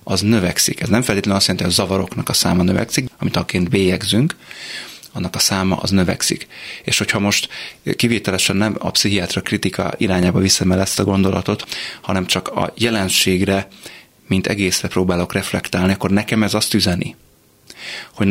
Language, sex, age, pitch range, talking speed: Hungarian, male, 30-49, 95-105 Hz, 155 wpm